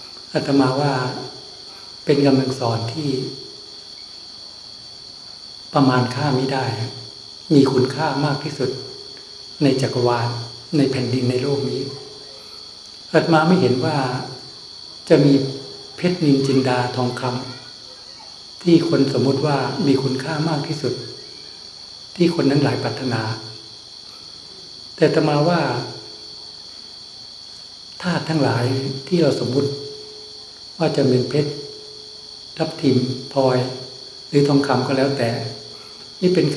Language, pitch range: Thai, 125-145 Hz